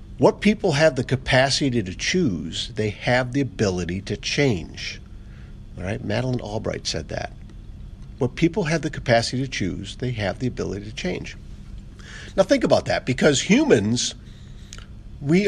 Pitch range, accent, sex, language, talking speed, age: 100-130 Hz, American, male, English, 150 wpm, 50-69